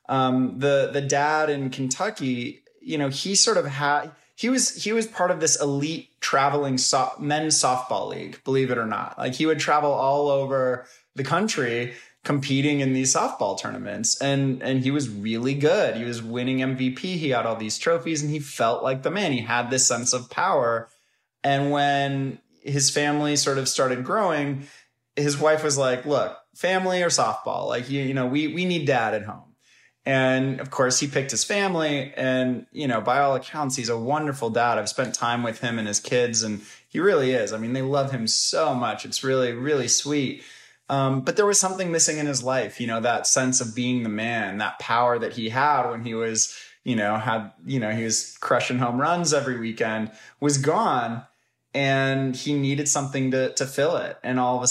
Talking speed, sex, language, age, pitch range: 205 wpm, male, English, 20-39, 125-145 Hz